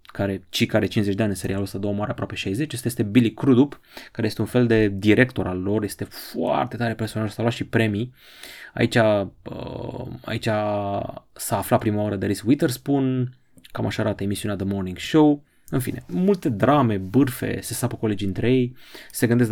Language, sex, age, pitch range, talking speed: Romanian, male, 20-39, 105-130 Hz, 190 wpm